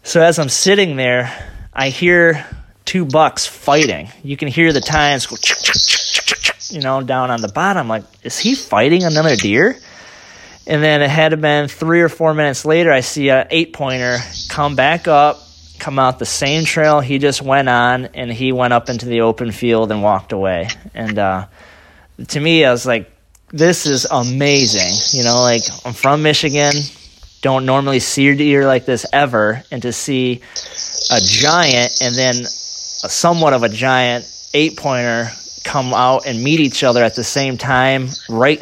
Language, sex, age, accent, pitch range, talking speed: English, male, 20-39, American, 115-145 Hz, 180 wpm